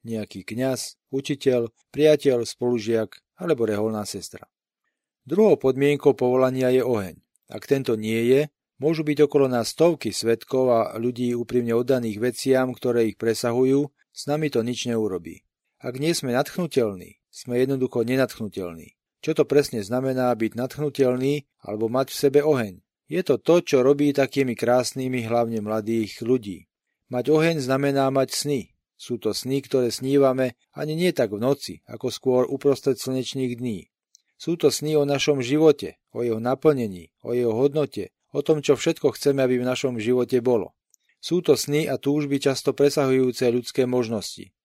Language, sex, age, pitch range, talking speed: Slovak, male, 40-59, 120-145 Hz, 155 wpm